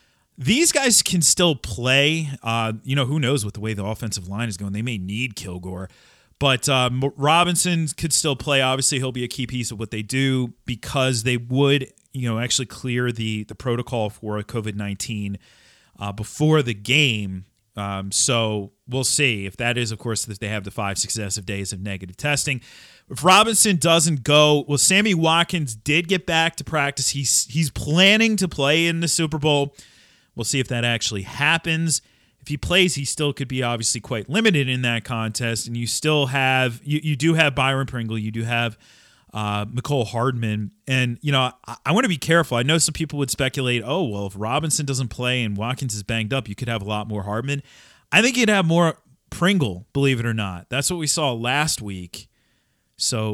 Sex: male